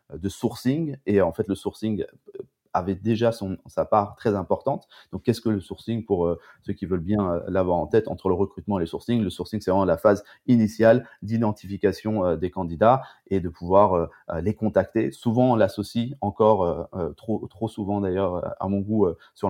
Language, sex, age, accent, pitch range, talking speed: French, male, 30-49, French, 95-110 Hz, 205 wpm